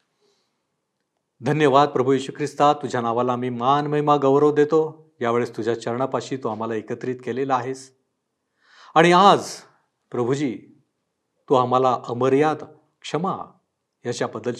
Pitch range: 130-190 Hz